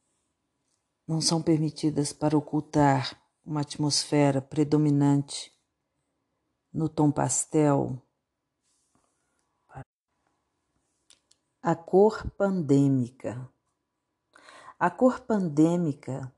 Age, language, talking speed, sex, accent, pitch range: 50-69, French, 60 wpm, female, Brazilian, 140-170 Hz